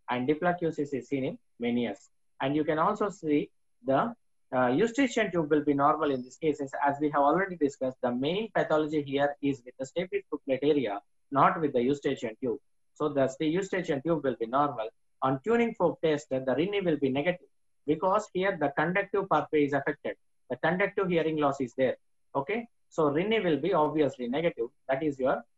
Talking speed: 195 wpm